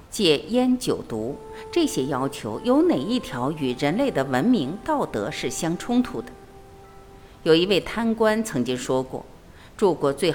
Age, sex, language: 50-69, female, Chinese